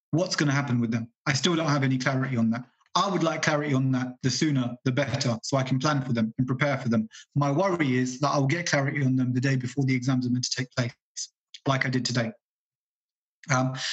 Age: 30-49